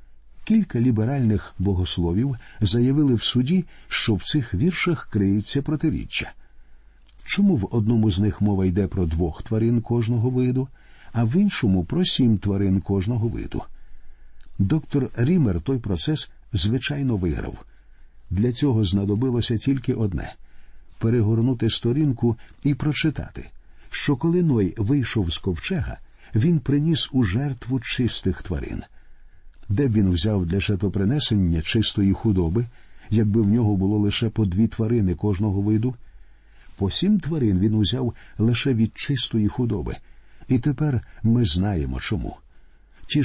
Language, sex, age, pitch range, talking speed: Ukrainian, male, 50-69, 95-130 Hz, 130 wpm